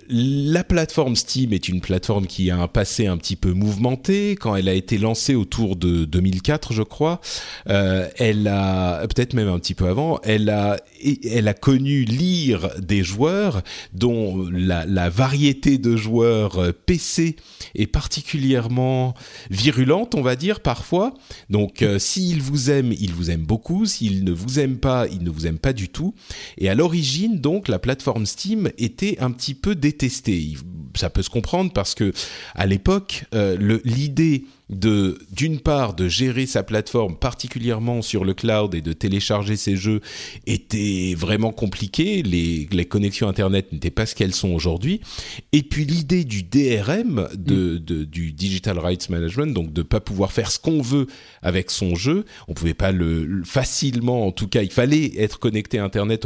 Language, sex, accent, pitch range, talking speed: French, male, French, 95-130 Hz, 180 wpm